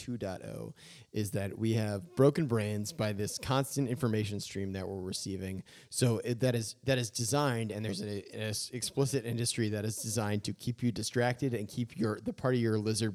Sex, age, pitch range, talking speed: male, 30-49, 105-135 Hz, 185 wpm